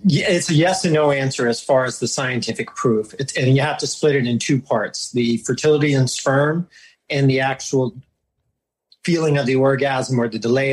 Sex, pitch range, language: male, 125-150 Hz, English